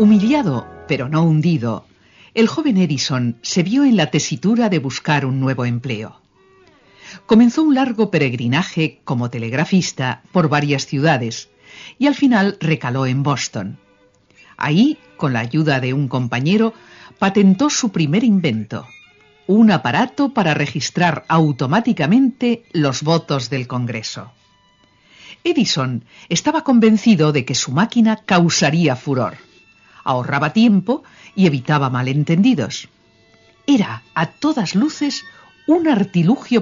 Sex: female